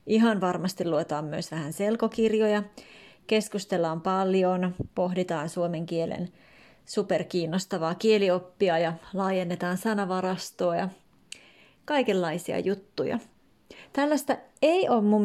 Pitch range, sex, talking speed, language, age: 180-230 Hz, female, 90 wpm, Finnish, 30-49